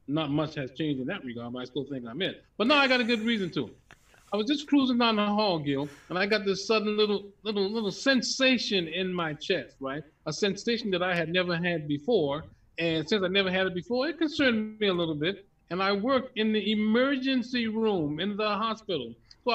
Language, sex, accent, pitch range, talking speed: English, male, American, 155-215 Hz, 225 wpm